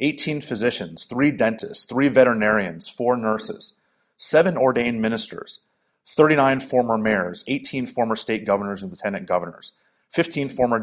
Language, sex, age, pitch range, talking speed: English, male, 30-49, 110-140 Hz, 125 wpm